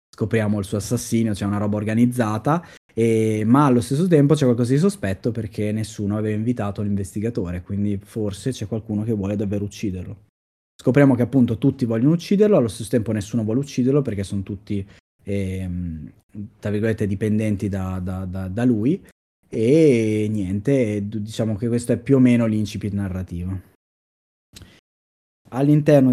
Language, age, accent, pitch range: Italian, 20-39, native, 100-125 Hz